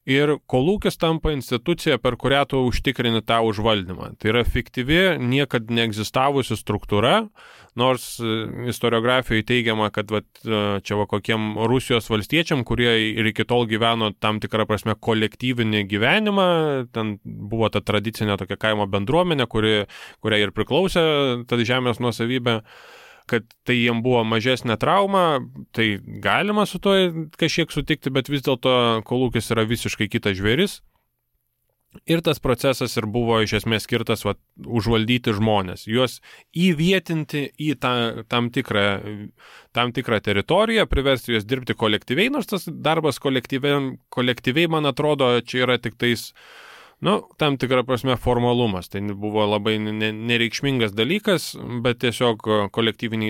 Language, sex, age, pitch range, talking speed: English, male, 20-39, 110-140 Hz, 130 wpm